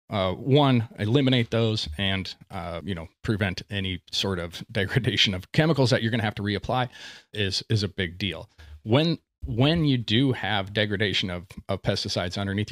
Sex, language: male, English